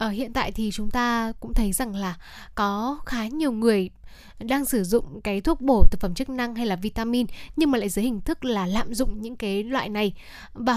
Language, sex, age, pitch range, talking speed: Vietnamese, female, 10-29, 215-265 Hz, 225 wpm